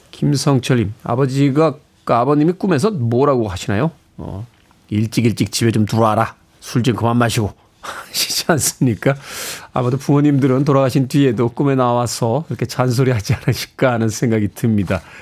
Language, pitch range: Korean, 120-180 Hz